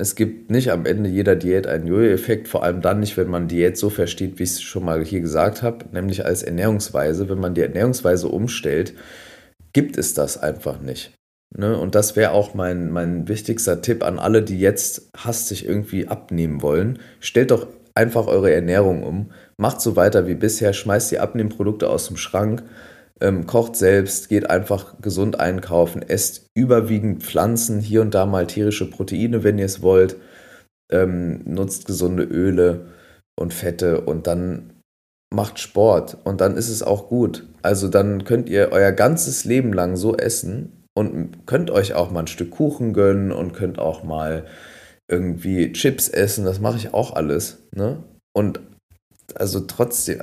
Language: German